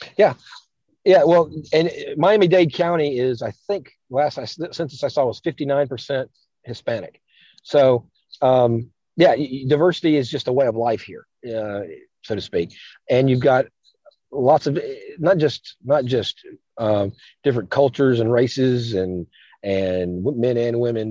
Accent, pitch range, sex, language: American, 115-140 Hz, male, English